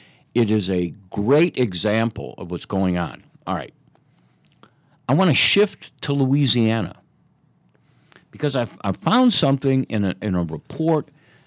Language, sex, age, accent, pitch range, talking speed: English, male, 60-79, American, 100-155 Hz, 145 wpm